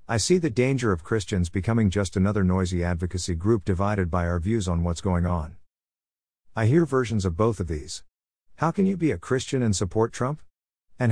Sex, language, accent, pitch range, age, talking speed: male, English, American, 90-115 Hz, 50-69, 200 wpm